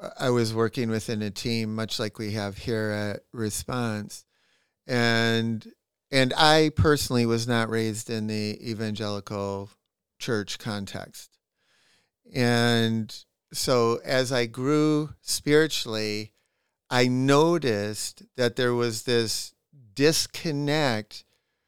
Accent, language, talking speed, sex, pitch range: American, English, 105 wpm, male, 110-140 Hz